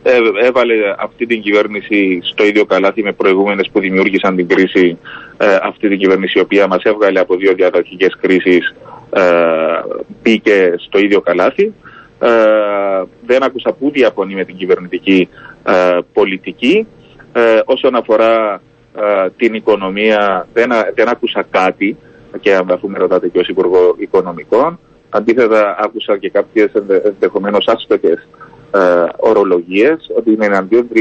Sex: male